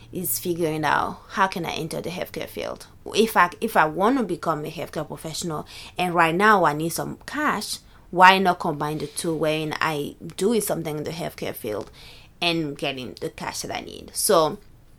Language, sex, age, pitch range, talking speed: English, female, 20-39, 160-190 Hz, 190 wpm